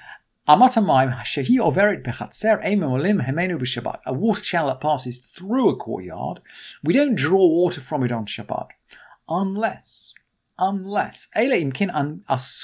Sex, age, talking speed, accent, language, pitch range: male, 50-69, 80 wpm, British, English, 145-215 Hz